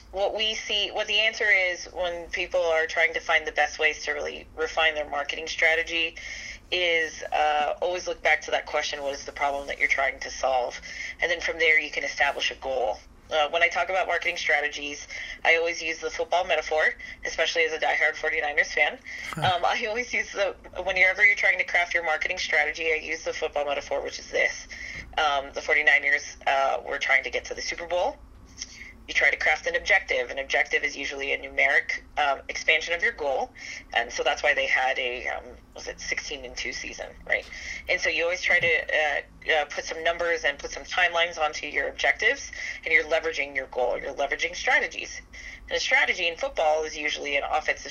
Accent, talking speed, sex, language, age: American, 210 wpm, female, English, 20-39